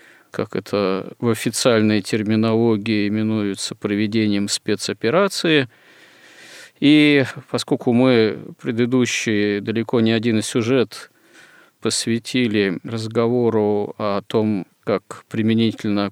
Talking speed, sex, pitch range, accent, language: 80 wpm, male, 105-125 Hz, native, Russian